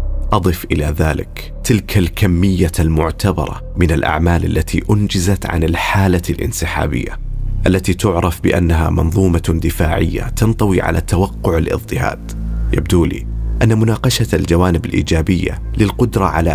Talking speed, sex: 110 wpm, male